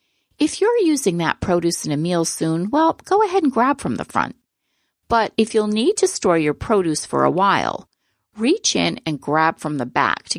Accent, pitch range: American, 155-230 Hz